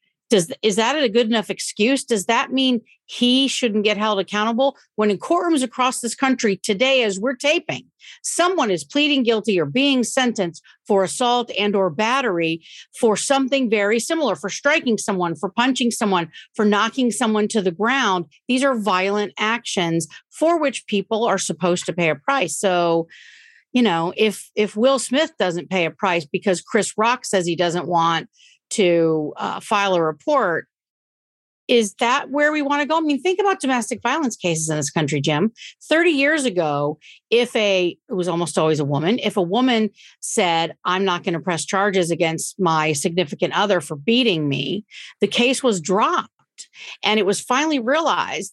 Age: 50-69